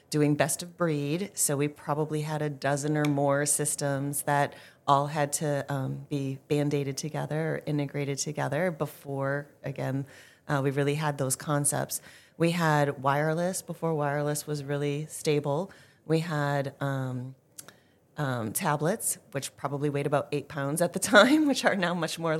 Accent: American